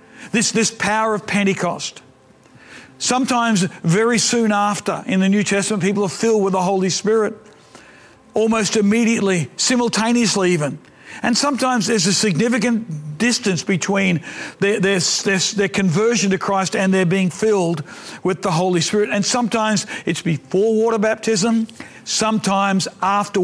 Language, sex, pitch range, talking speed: English, male, 185-225 Hz, 140 wpm